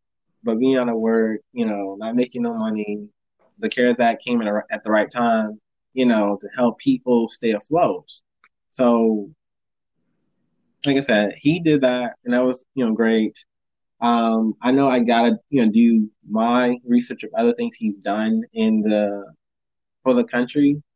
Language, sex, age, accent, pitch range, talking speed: English, male, 20-39, American, 110-130 Hz, 170 wpm